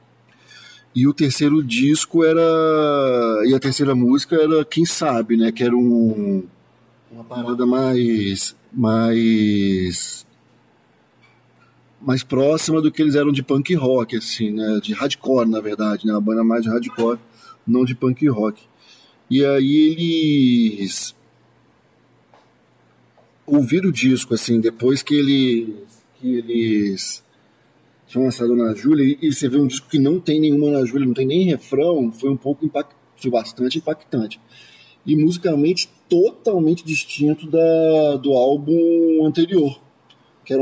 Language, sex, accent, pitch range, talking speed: Portuguese, male, Brazilian, 115-155 Hz, 135 wpm